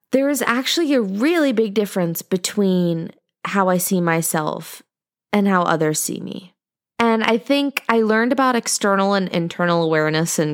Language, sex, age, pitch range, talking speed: English, female, 20-39, 165-225 Hz, 160 wpm